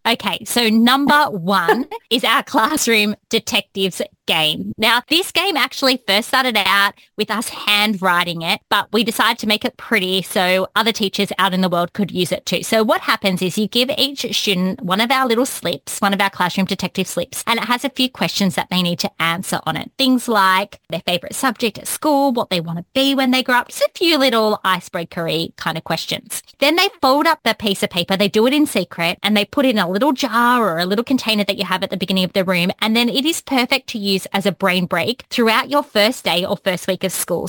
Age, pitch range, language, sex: 20-39, 190-240 Hz, English, female